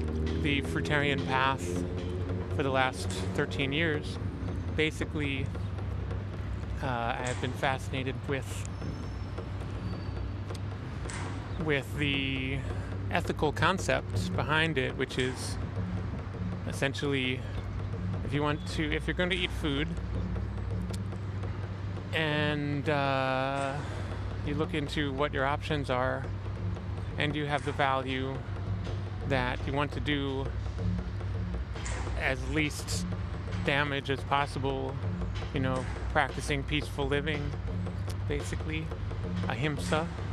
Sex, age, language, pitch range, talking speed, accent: male, 30-49, English, 95-130 Hz, 95 wpm, American